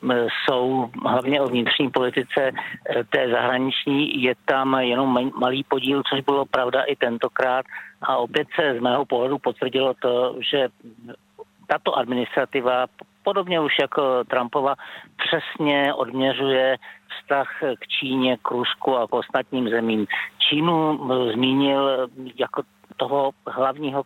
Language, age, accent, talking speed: Czech, 50-69, native, 120 wpm